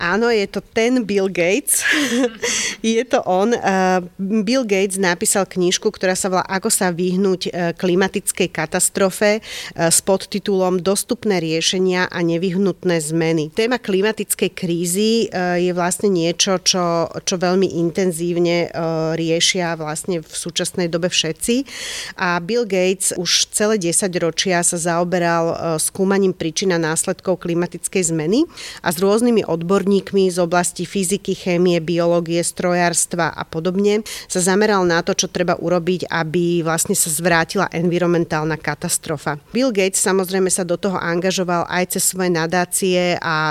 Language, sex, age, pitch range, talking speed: Slovak, female, 40-59, 170-195 Hz, 130 wpm